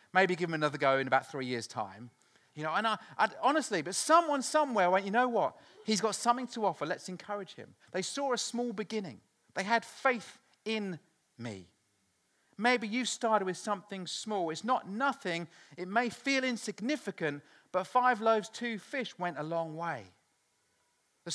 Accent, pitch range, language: British, 160-225 Hz, English